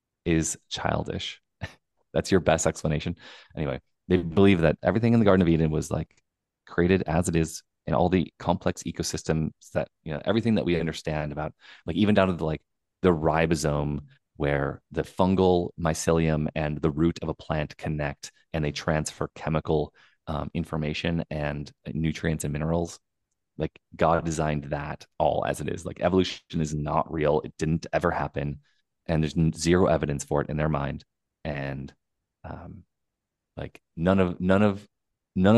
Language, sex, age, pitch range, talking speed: English, male, 30-49, 75-90 Hz, 165 wpm